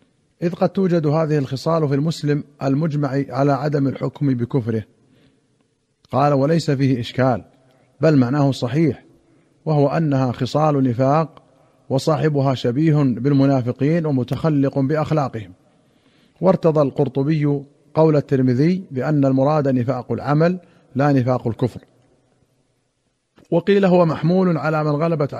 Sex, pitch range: male, 130-150 Hz